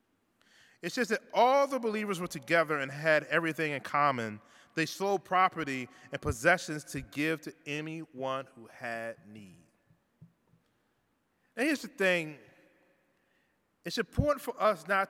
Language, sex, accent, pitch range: English, male, American, 145-205 Hz